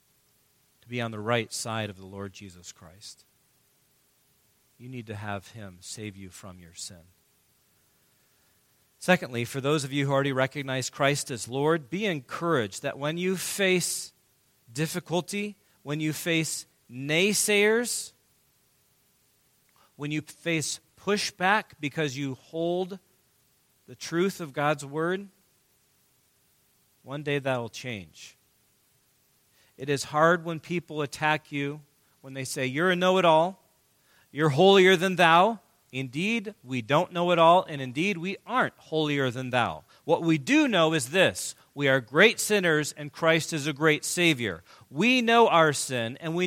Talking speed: 145 wpm